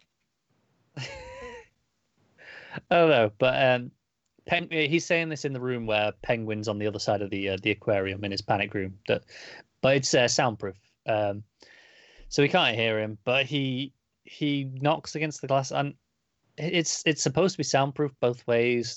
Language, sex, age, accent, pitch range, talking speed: English, male, 20-39, British, 105-130 Hz, 170 wpm